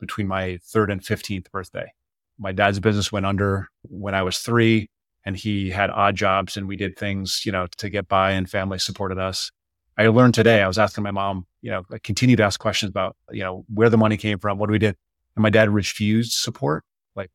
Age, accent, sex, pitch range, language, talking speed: 30-49, American, male, 95-115 Hz, English, 225 wpm